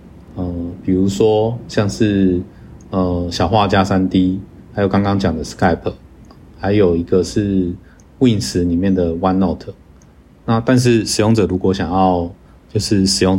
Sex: male